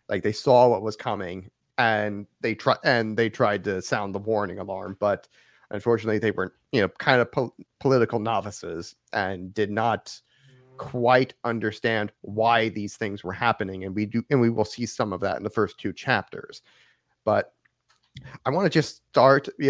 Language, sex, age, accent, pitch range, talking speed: English, male, 30-49, American, 110-135 Hz, 175 wpm